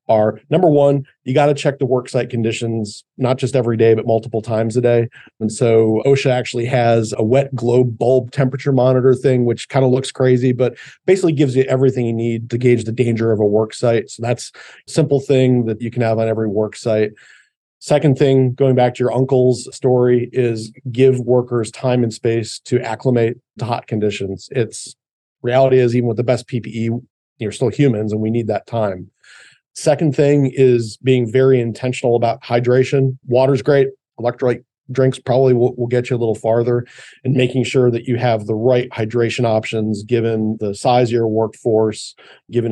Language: English